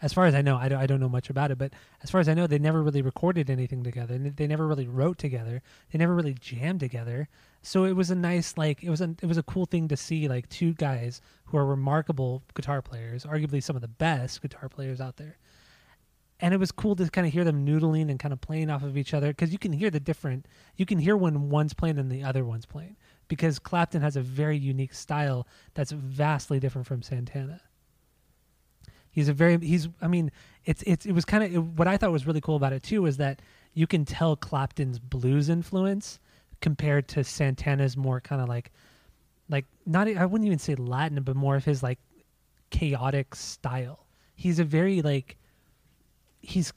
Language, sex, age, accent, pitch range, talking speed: English, male, 20-39, American, 135-165 Hz, 215 wpm